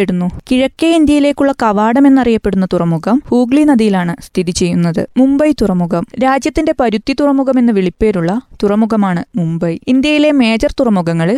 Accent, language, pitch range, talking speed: native, Malayalam, 190-265 Hz, 95 wpm